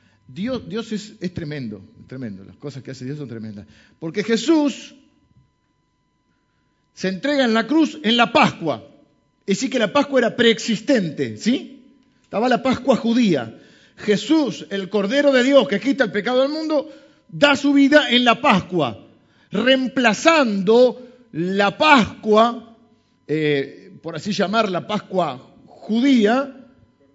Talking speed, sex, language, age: 135 wpm, male, Spanish, 50-69